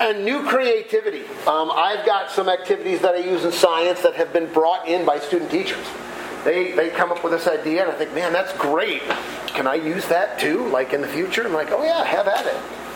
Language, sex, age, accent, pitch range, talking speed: English, male, 40-59, American, 165-240 Hz, 230 wpm